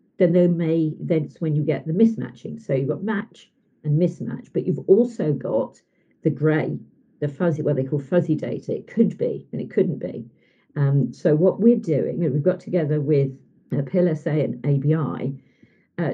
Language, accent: English, British